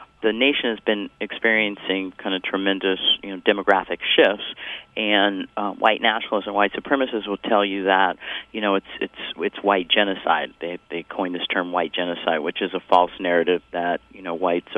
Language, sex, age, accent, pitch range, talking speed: English, male, 40-59, American, 95-110 Hz, 185 wpm